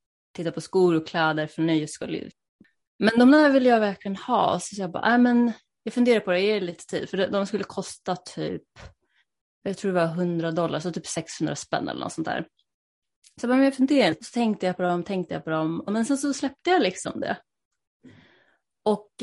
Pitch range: 180-230 Hz